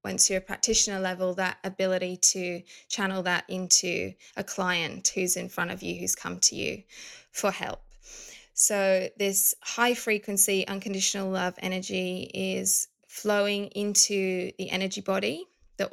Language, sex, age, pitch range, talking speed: English, female, 20-39, 185-205 Hz, 145 wpm